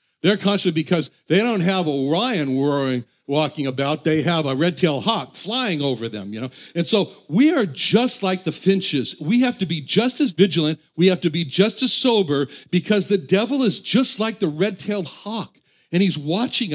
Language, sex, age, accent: English, male, 60-79, American